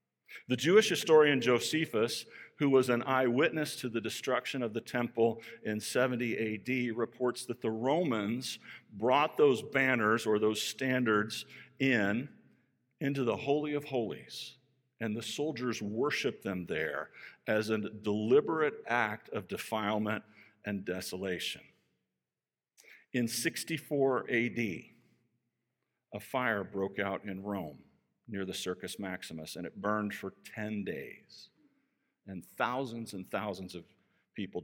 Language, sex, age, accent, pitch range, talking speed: English, male, 50-69, American, 100-130 Hz, 125 wpm